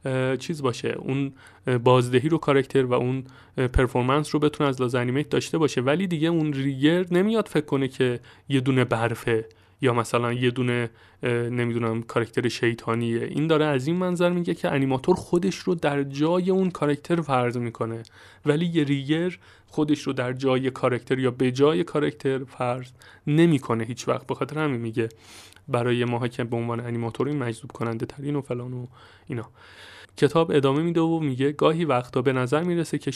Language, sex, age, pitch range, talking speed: Persian, male, 30-49, 125-150 Hz, 170 wpm